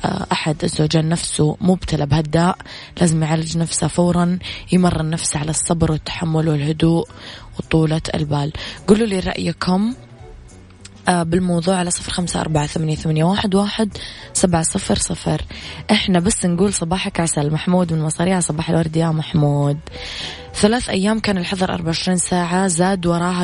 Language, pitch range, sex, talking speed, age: Arabic, 160-190 Hz, female, 130 wpm, 20-39